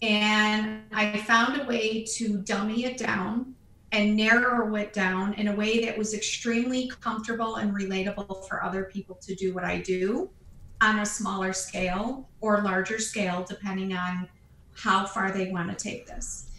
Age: 40-59